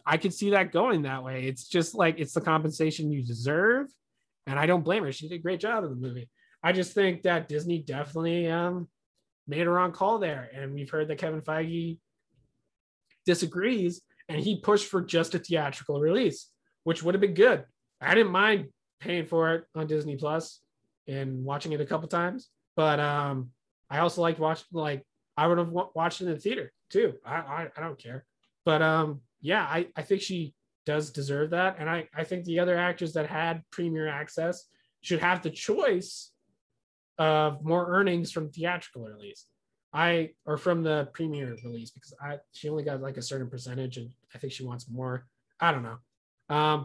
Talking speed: 195 wpm